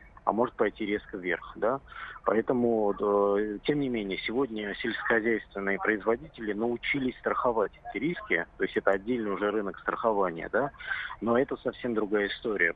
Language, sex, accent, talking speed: Russian, male, native, 140 wpm